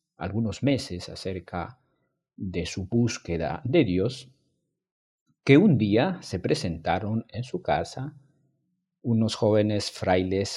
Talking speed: 110 wpm